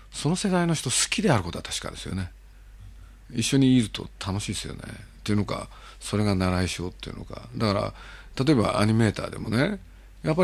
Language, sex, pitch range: Japanese, male, 95-125 Hz